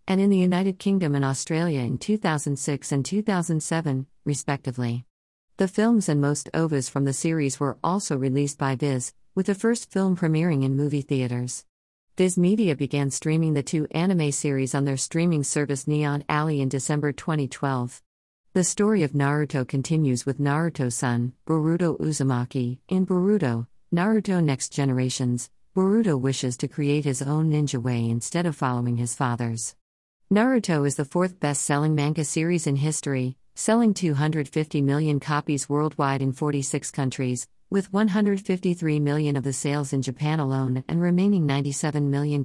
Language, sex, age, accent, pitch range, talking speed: English, female, 50-69, American, 135-165 Hz, 155 wpm